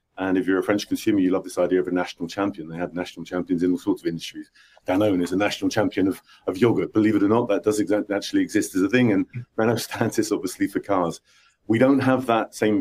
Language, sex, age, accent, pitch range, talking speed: English, male, 40-59, British, 95-125 Hz, 250 wpm